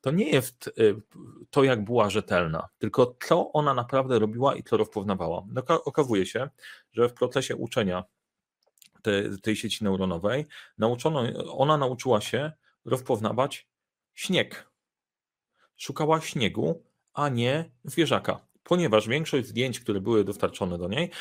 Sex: male